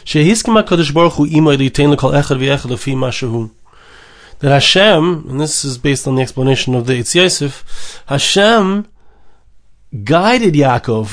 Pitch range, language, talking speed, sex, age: 130-170 Hz, English, 80 wpm, male, 30-49